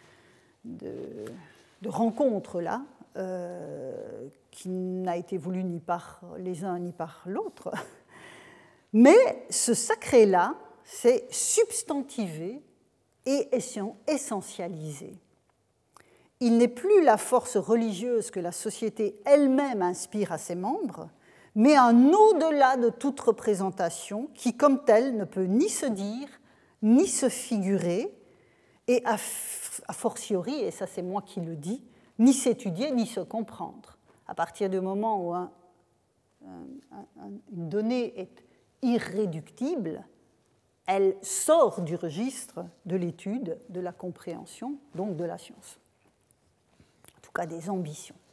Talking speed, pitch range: 125 wpm, 185-260 Hz